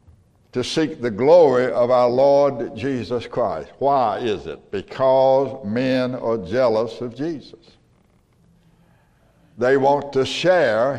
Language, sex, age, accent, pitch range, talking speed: English, male, 60-79, American, 120-155 Hz, 120 wpm